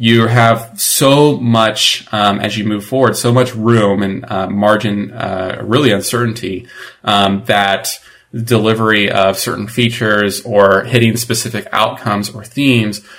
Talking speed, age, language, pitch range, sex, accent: 135 wpm, 30-49, English, 100-120 Hz, male, American